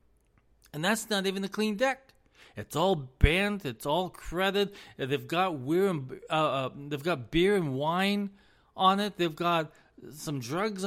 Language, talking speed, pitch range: English, 135 wpm, 130-205 Hz